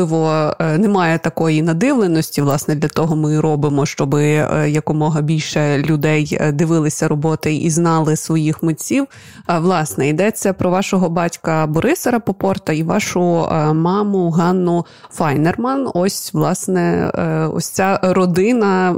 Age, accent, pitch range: 20-39, native, 160-205 Hz